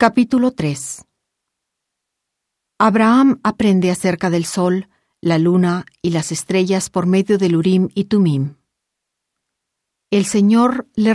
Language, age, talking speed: English, 40-59, 115 wpm